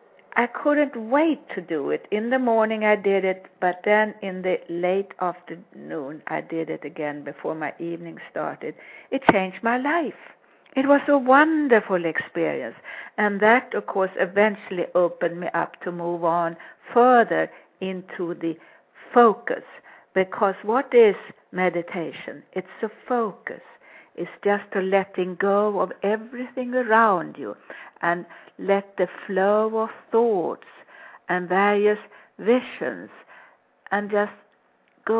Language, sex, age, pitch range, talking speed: English, female, 60-79, 180-225 Hz, 135 wpm